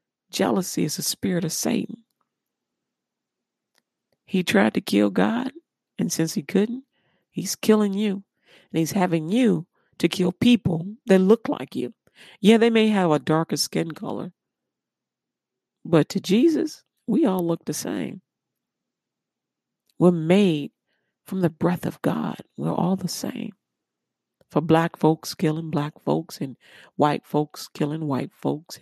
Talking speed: 140 wpm